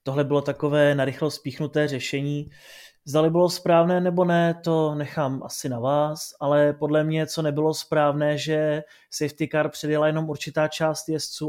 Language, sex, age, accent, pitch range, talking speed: Czech, male, 30-49, native, 140-160 Hz, 155 wpm